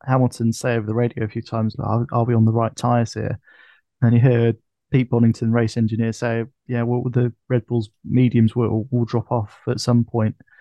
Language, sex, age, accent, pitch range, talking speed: English, male, 20-39, British, 115-130 Hz, 210 wpm